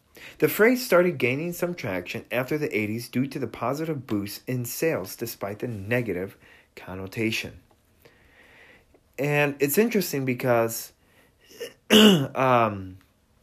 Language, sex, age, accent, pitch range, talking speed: English, male, 30-49, American, 100-120 Hz, 110 wpm